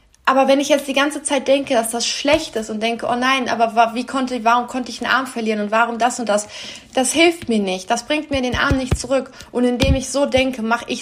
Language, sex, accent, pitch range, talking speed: German, female, German, 205-240 Hz, 265 wpm